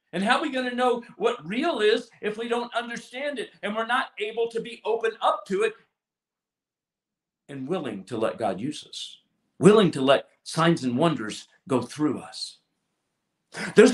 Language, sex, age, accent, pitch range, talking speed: English, male, 50-69, American, 165-235 Hz, 180 wpm